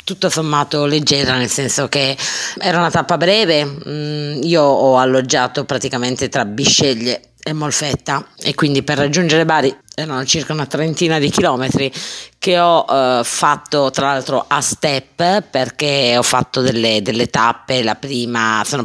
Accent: native